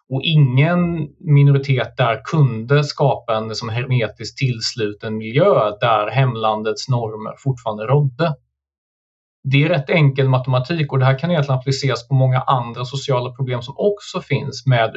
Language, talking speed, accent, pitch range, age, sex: Swedish, 145 wpm, native, 120-140 Hz, 30-49, male